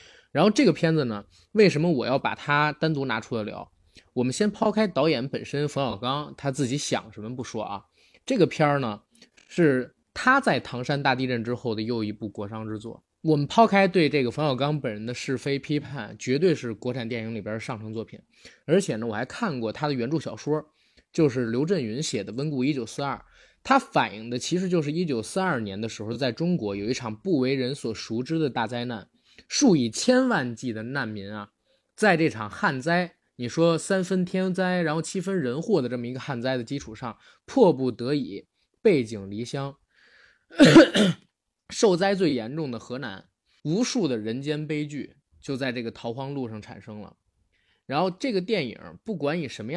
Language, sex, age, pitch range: Chinese, male, 20-39, 115-170 Hz